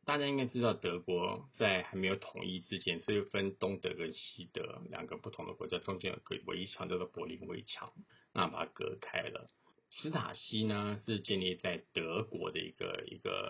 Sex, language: male, Chinese